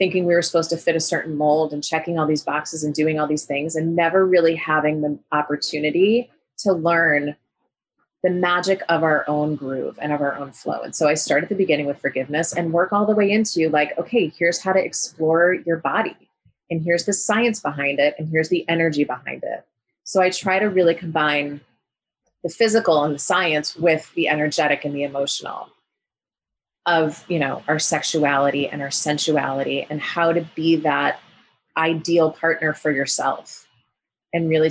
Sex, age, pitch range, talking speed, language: female, 30-49, 150-185 Hz, 190 wpm, English